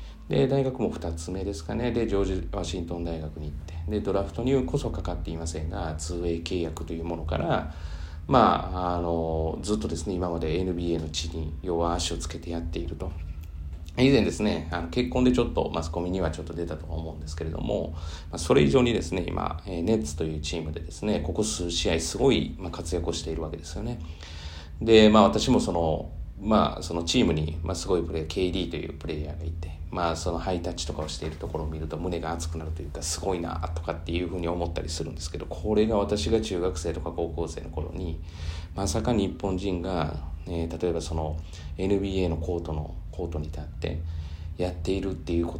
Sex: male